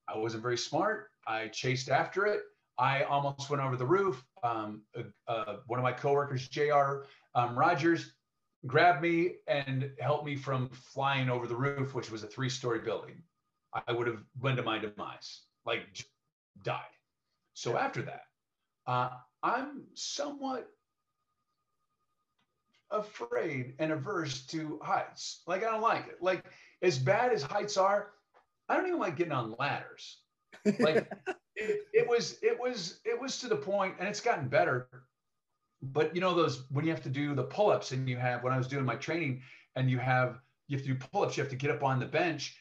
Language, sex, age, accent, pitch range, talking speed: English, male, 40-59, American, 130-195 Hz, 185 wpm